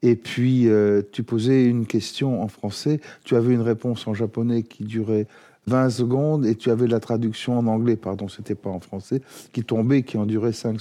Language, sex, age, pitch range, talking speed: French, male, 40-59, 110-135 Hz, 205 wpm